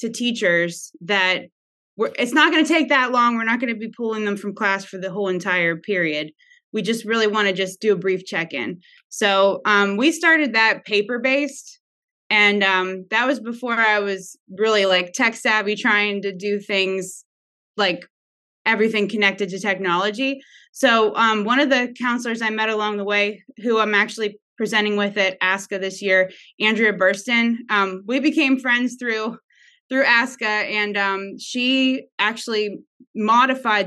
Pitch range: 190-235 Hz